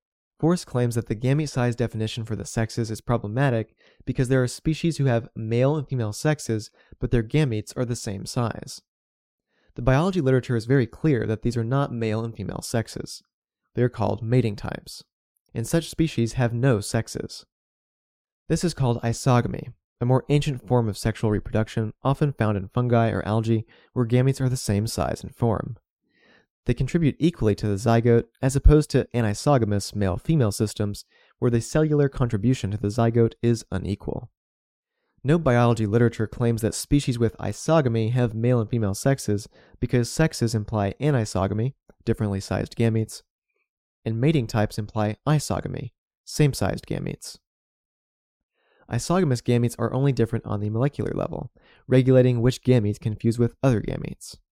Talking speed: 160 wpm